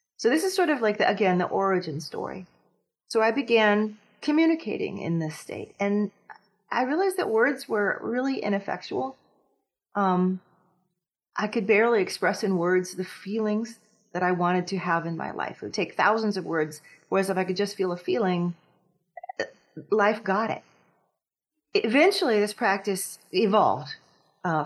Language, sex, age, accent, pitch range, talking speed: English, female, 30-49, American, 175-225 Hz, 155 wpm